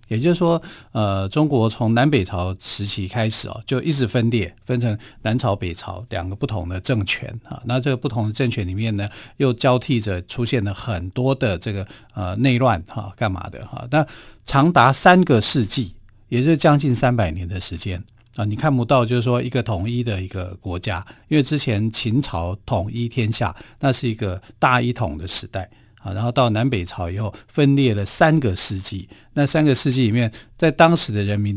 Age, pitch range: 50-69, 100-130 Hz